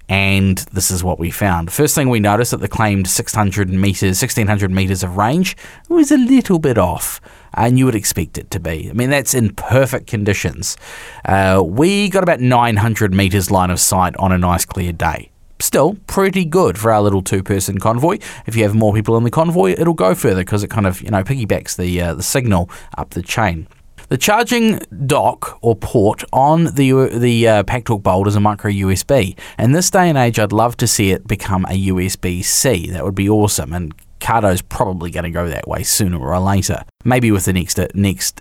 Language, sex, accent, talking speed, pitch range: English, male, Australian, 210 wpm, 90-115 Hz